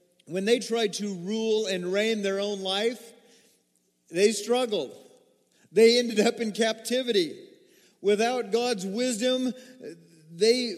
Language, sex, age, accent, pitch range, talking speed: English, male, 40-59, American, 140-225 Hz, 115 wpm